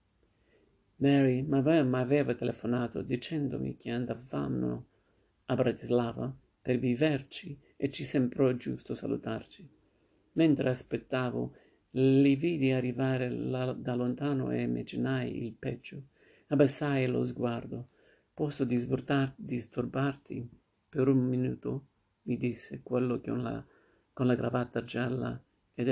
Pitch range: 115-135 Hz